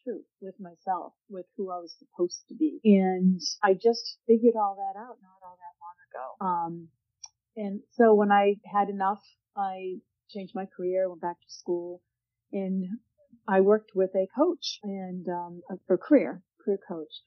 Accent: American